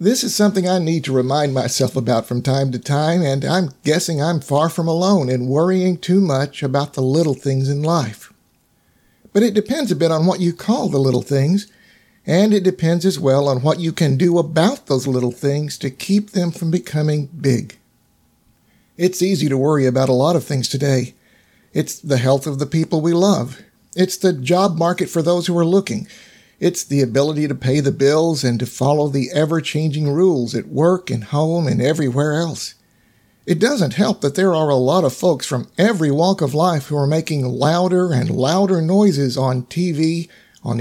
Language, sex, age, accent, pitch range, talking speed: English, male, 50-69, American, 140-180 Hz, 195 wpm